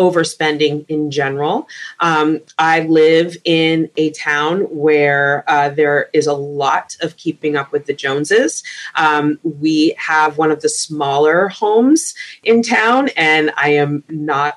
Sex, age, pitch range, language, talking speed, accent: female, 30-49, 150-180 Hz, English, 145 wpm, American